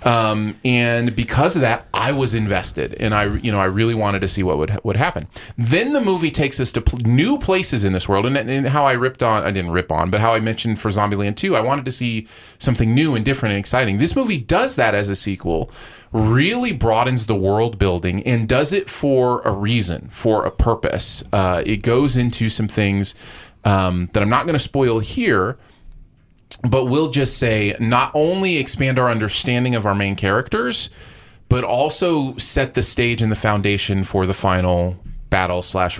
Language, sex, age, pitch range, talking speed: English, male, 30-49, 100-135 Hz, 200 wpm